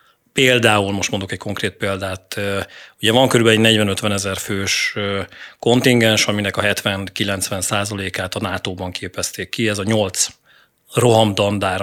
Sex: male